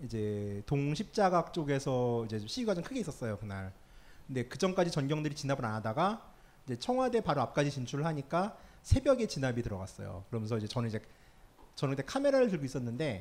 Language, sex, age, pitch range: Korean, male, 30-49, 125-195 Hz